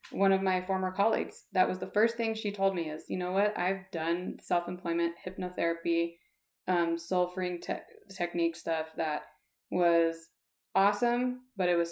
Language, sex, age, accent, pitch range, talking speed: English, female, 20-39, American, 180-205 Hz, 165 wpm